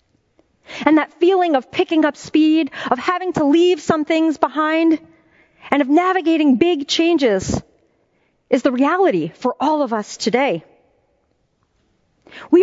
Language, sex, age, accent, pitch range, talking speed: English, female, 40-59, American, 240-330 Hz, 135 wpm